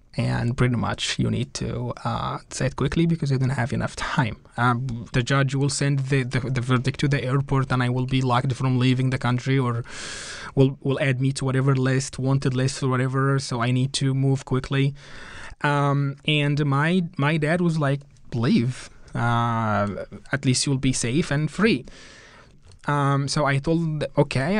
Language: English